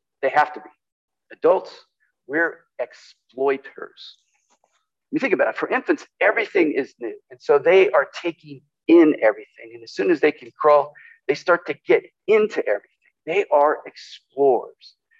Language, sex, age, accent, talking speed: English, male, 50-69, American, 155 wpm